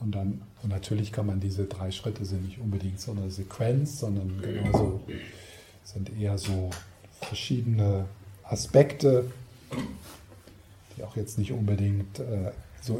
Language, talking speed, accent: German, 130 wpm, German